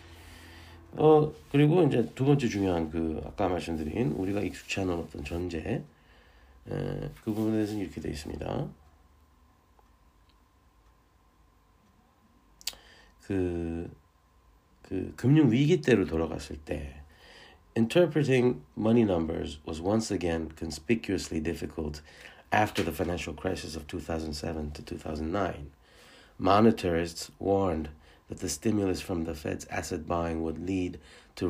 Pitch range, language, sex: 80-110 Hz, Korean, male